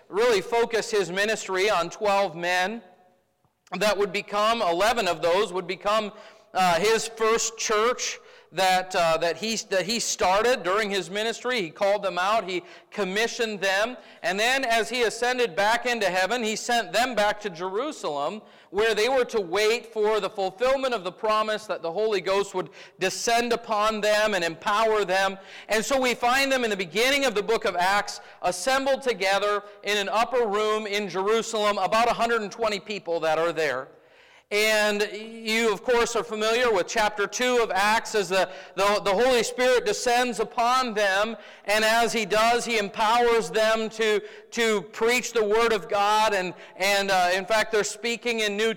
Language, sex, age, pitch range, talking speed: English, male, 40-59, 200-235 Hz, 175 wpm